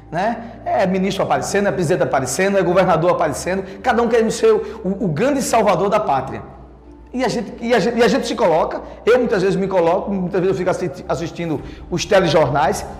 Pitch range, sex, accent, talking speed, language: 170-235 Hz, male, Brazilian, 205 wpm, Portuguese